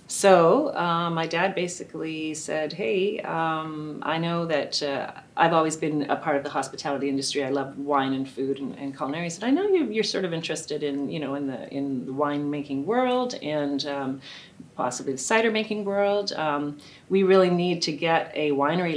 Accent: American